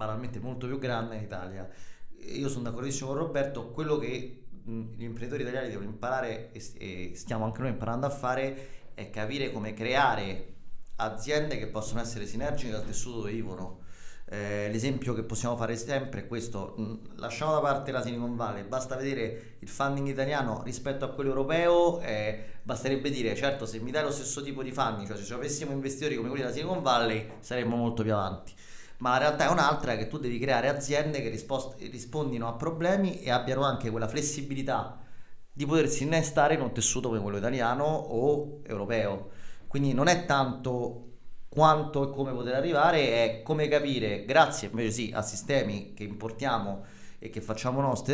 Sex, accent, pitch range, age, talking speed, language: male, native, 110-135 Hz, 30-49, 175 wpm, Italian